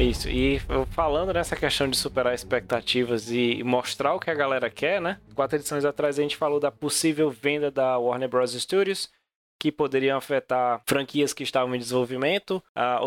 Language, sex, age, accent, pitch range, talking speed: Portuguese, male, 20-39, Brazilian, 125-165 Hz, 175 wpm